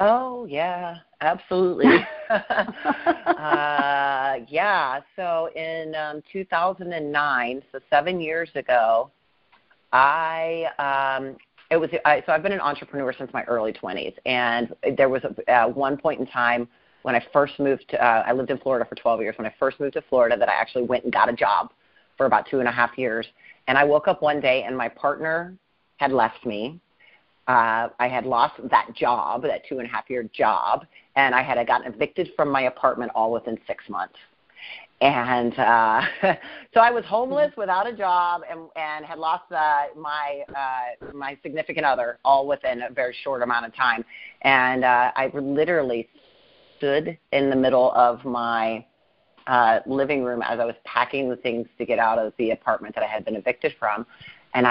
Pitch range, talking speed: 125-165 Hz, 180 wpm